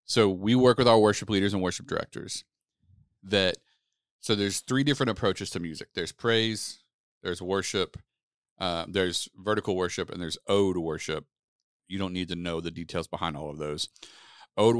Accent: American